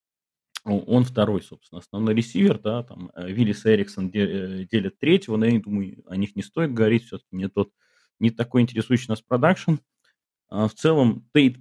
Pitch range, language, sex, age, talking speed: 95-125 Hz, Russian, male, 30-49, 150 wpm